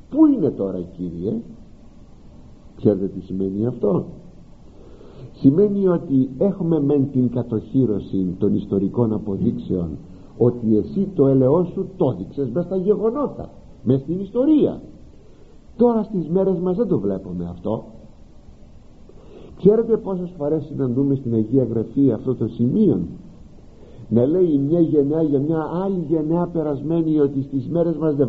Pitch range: 110-175 Hz